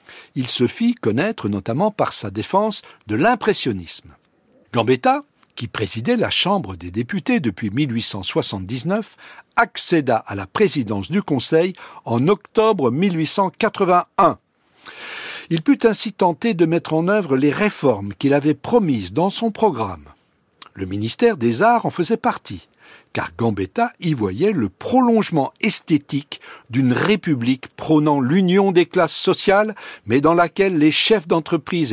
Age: 60-79